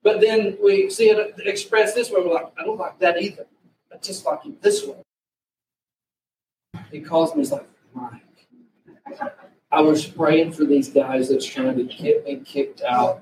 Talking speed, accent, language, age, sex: 180 wpm, American, English, 40-59, male